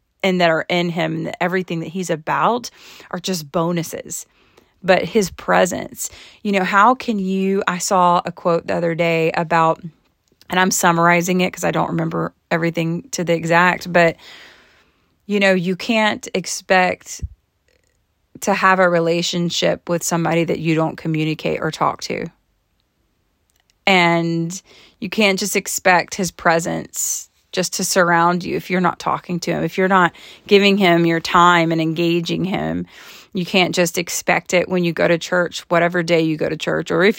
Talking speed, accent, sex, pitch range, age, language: 170 wpm, American, female, 170-190 Hz, 30-49, English